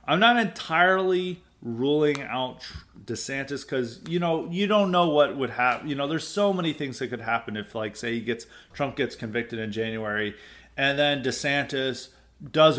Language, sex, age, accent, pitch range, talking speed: English, male, 30-49, American, 115-140 Hz, 180 wpm